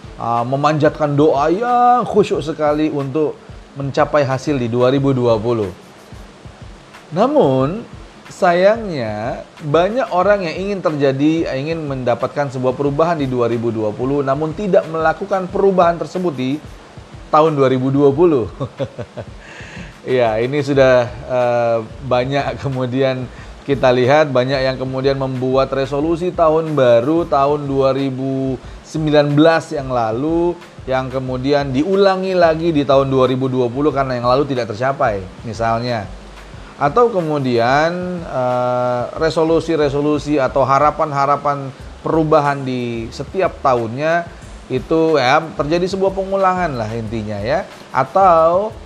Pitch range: 130-160 Hz